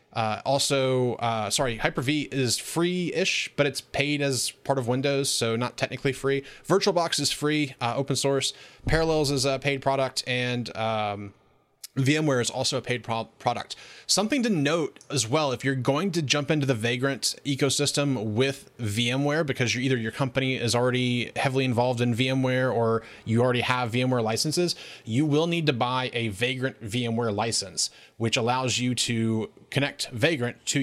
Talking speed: 165 wpm